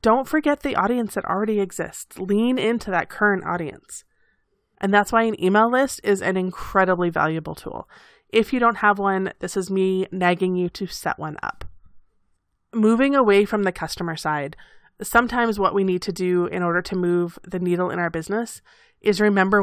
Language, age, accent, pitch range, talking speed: English, 30-49, American, 180-215 Hz, 185 wpm